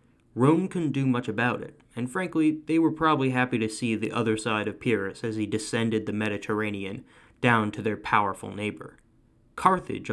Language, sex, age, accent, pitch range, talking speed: English, male, 20-39, American, 110-130 Hz, 180 wpm